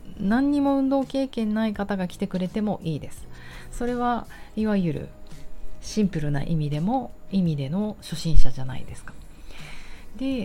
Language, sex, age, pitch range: Japanese, female, 40-59, 145-200 Hz